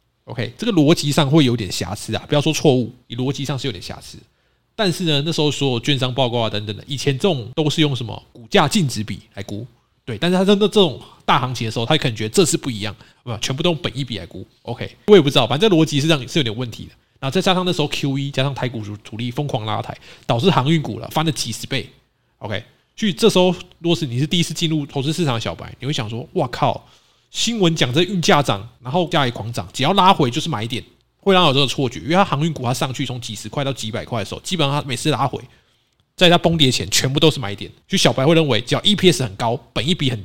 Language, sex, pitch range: Chinese, male, 115-160 Hz